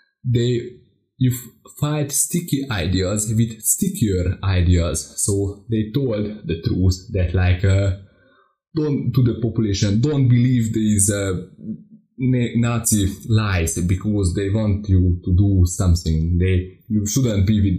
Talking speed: 130 wpm